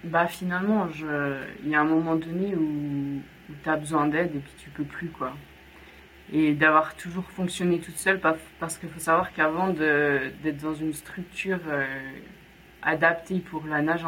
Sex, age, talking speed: female, 20-39, 165 wpm